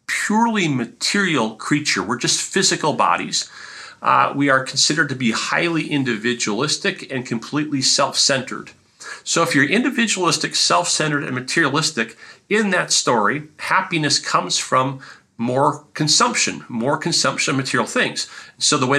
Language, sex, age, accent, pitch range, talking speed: English, male, 40-59, American, 130-170 Hz, 130 wpm